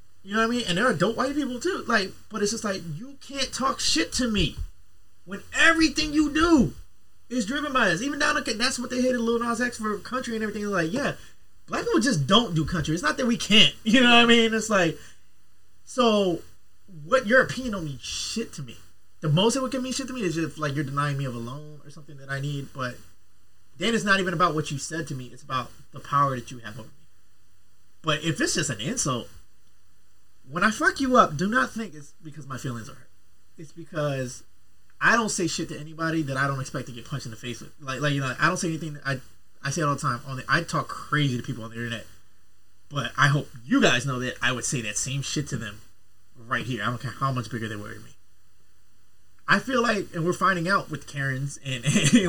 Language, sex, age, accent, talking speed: English, male, 20-39, American, 250 wpm